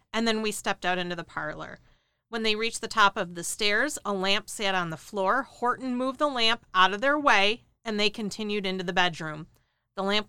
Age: 40-59